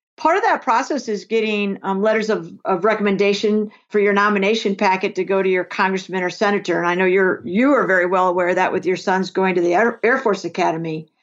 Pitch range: 195-240 Hz